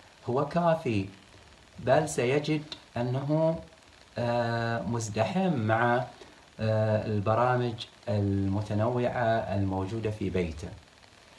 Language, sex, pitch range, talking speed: Arabic, male, 100-140 Hz, 65 wpm